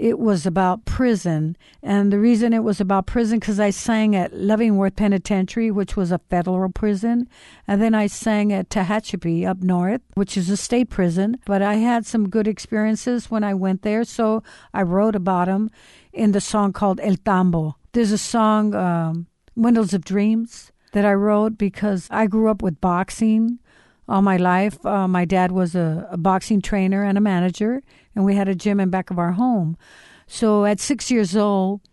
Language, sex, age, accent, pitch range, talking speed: English, female, 60-79, American, 185-215 Hz, 190 wpm